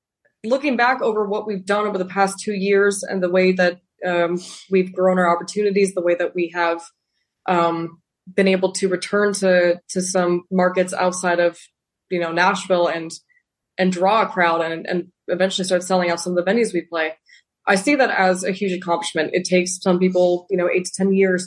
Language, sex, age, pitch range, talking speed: English, female, 20-39, 175-200 Hz, 205 wpm